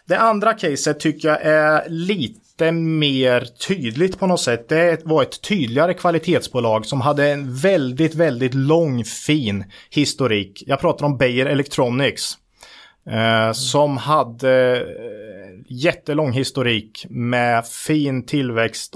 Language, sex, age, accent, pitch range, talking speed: Swedish, male, 30-49, Norwegian, 120-160 Hz, 115 wpm